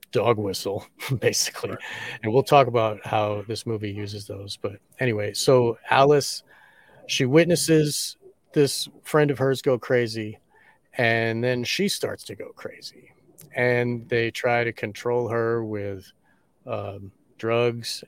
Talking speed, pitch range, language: 135 wpm, 105-125 Hz, English